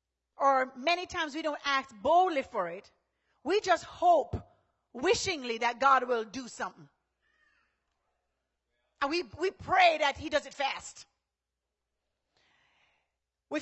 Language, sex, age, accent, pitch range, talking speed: English, female, 40-59, American, 220-330 Hz, 125 wpm